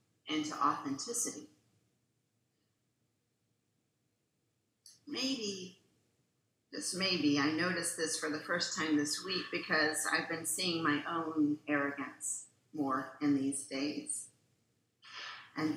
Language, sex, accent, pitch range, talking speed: English, female, American, 140-170 Hz, 100 wpm